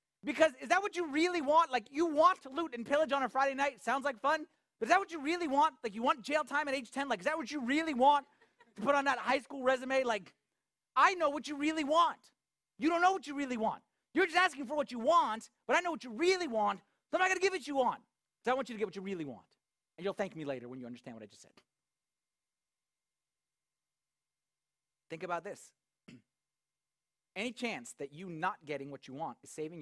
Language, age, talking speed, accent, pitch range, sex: English, 30-49, 250 wpm, American, 210-295 Hz, male